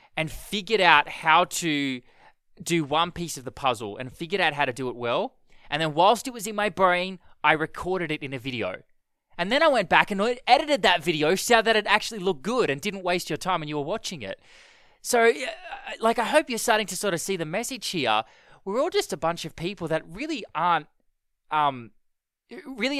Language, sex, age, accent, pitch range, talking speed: English, male, 20-39, Australian, 150-215 Hz, 215 wpm